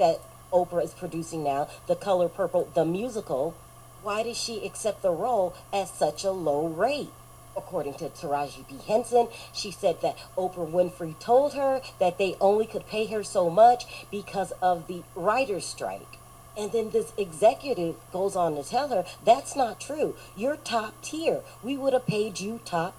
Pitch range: 175-220 Hz